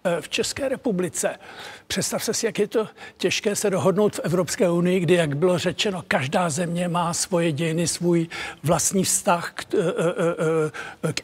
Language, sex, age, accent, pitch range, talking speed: Czech, male, 60-79, native, 165-205 Hz, 150 wpm